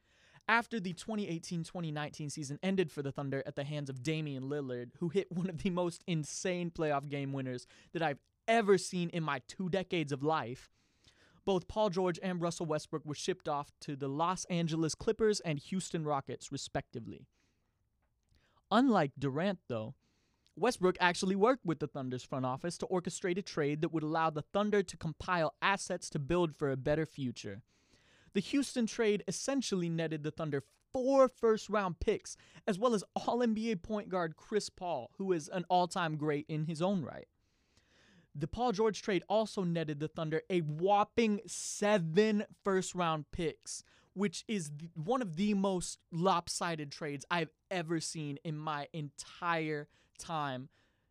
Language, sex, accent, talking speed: English, male, American, 160 wpm